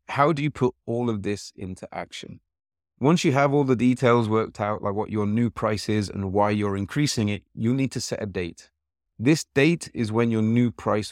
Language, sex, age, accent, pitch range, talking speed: English, male, 30-49, British, 95-120 Hz, 220 wpm